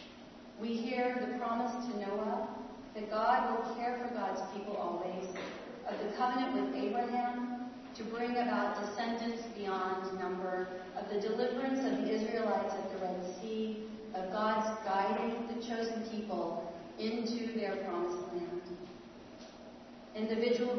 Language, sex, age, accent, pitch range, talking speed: English, female, 40-59, American, 200-240 Hz, 135 wpm